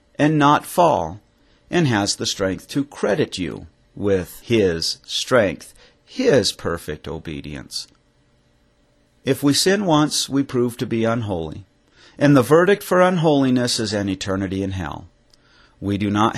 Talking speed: 140 wpm